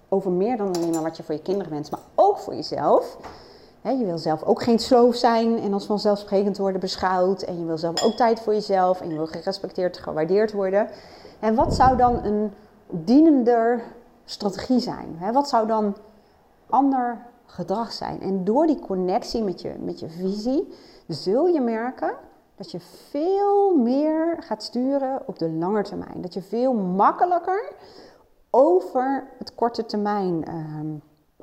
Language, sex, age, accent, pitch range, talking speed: Dutch, female, 40-59, Dutch, 175-245 Hz, 160 wpm